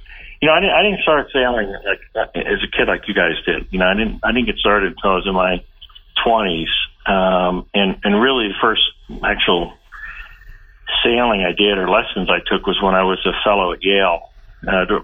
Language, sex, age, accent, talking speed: English, male, 40-59, American, 200 wpm